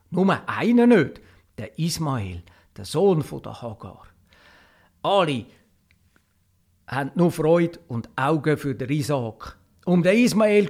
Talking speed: 120 wpm